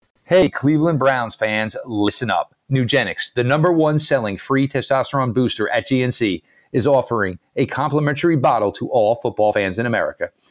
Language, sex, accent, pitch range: English, male, American, 115-145 Hz